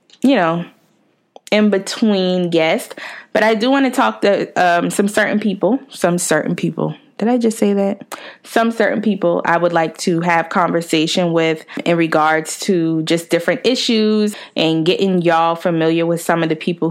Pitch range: 165-215 Hz